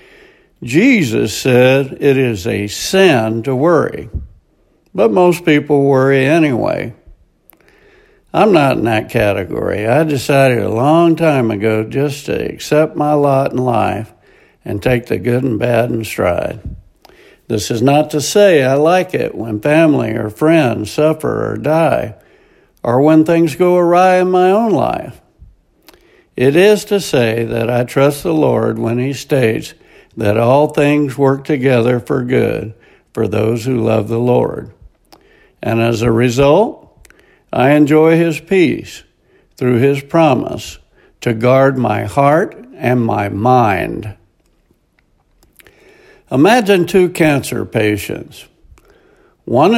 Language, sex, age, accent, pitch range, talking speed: English, male, 60-79, American, 115-155 Hz, 135 wpm